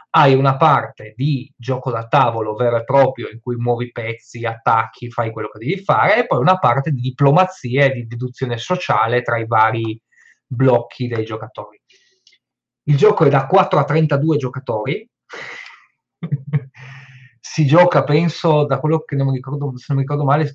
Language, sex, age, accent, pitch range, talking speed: Italian, male, 20-39, native, 120-145 Hz, 160 wpm